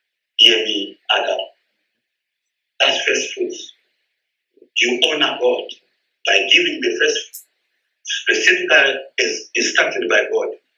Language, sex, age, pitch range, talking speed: English, male, 60-79, 360-425 Hz, 100 wpm